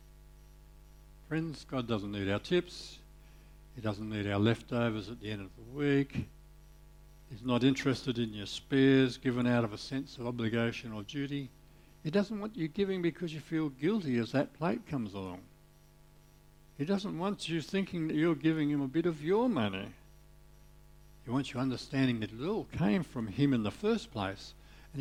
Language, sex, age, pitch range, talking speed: English, male, 60-79, 120-160 Hz, 180 wpm